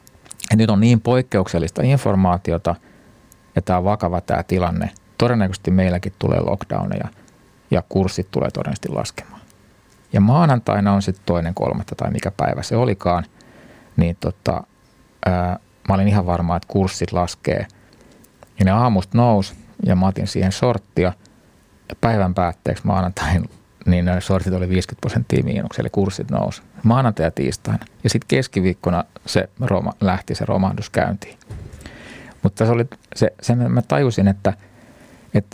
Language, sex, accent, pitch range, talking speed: Finnish, male, native, 95-110 Hz, 140 wpm